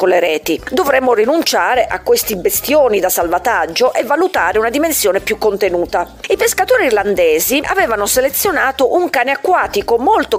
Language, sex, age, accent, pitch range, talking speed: Italian, female, 40-59, native, 195-300 Hz, 140 wpm